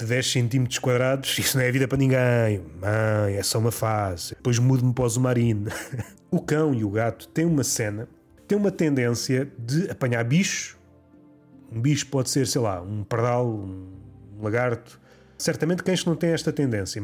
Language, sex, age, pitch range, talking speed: Portuguese, male, 30-49, 120-175 Hz, 180 wpm